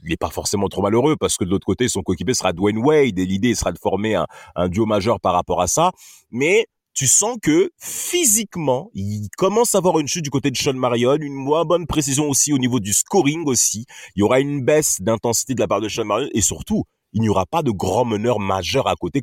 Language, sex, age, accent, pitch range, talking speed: French, male, 30-49, French, 100-145 Hz, 245 wpm